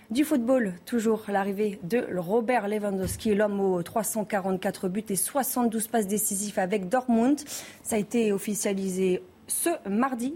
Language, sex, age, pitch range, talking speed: French, female, 20-39, 205-255 Hz, 135 wpm